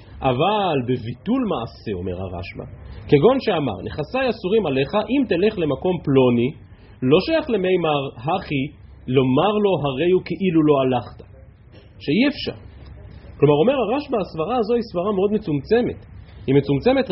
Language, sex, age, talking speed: Hebrew, male, 30-49, 135 wpm